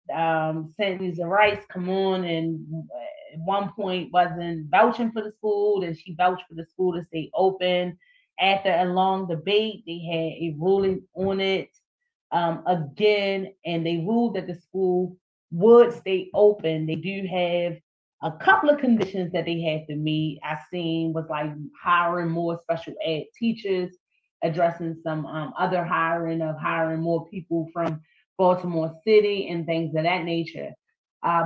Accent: American